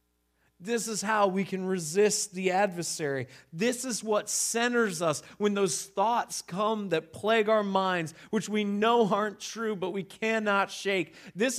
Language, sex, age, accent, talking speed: English, male, 40-59, American, 160 wpm